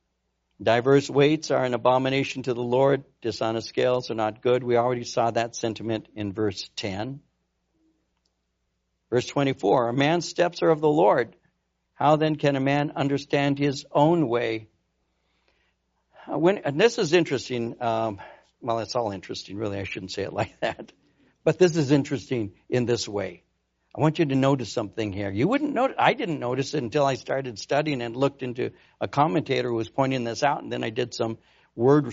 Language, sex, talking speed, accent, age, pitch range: English, male, 180 wpm, American, 60-79, 110-150 Hz